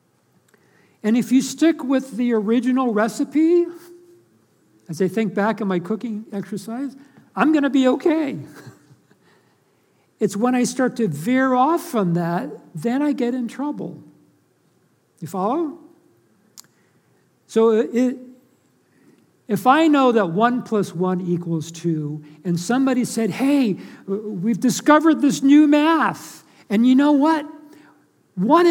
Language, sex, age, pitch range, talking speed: English, male, 60-79, 190-265 Hz, 130 wpm